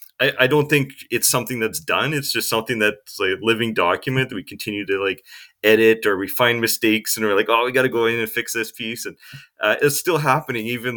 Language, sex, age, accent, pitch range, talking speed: English, male, 30-49, American, 105-130 Hz, 230 wpm